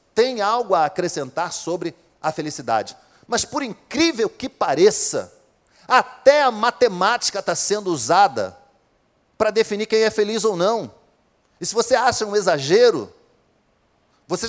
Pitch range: 145-220 Hz